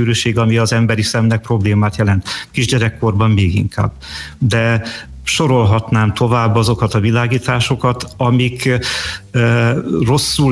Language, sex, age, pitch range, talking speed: Hungarian, male, 50-69, 105-120 Hz, 105 wpm